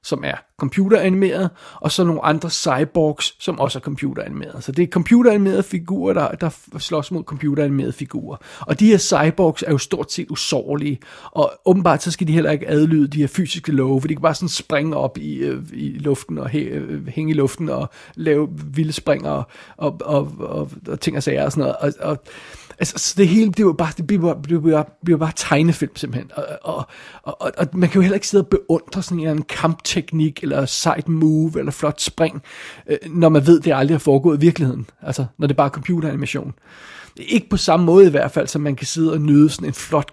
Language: Danish